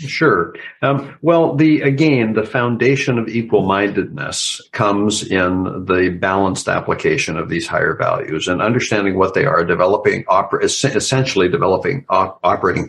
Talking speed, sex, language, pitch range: 135 wpm, male, English, 95-140 Hz